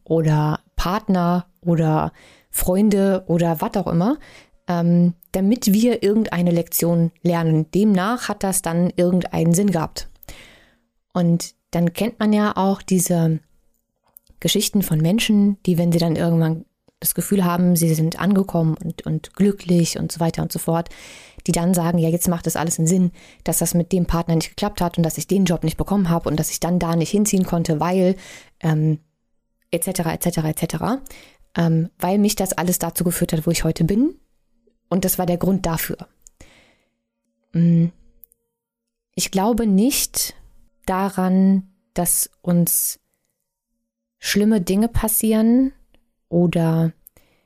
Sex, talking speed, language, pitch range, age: female, 150 wpm, German, 165-195 Hz, 20-39